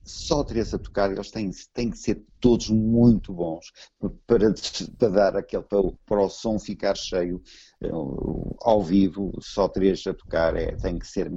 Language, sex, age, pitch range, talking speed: Portuguese, male, 50-69, 90-110 Hz, 170 wpm